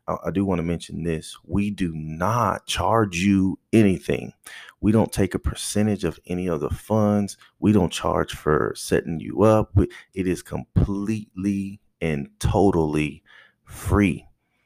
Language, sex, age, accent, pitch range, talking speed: English, male, 30-49, American, 80-100 Hz, 145 wpm